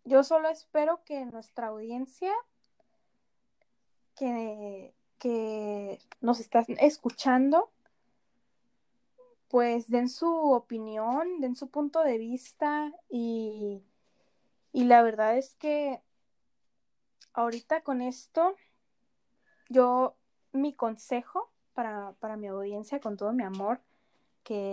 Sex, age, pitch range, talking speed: female, 10-29, 220-265 Hz, 100 wpm